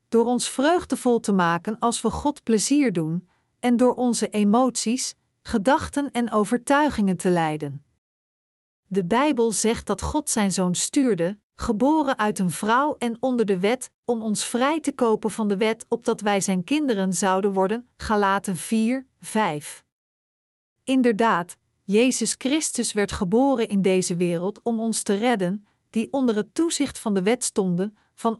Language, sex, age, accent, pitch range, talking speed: Dutch, female, 50-69, Dutch, 200-250 Hz, 155 wpm